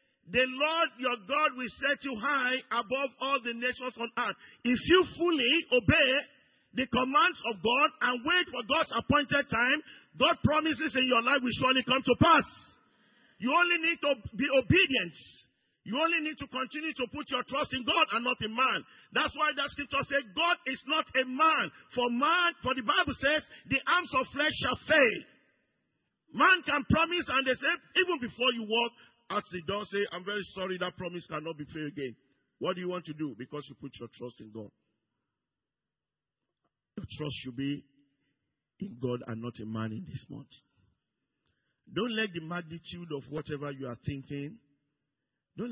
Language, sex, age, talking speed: English, male, 50-69, 185 wpm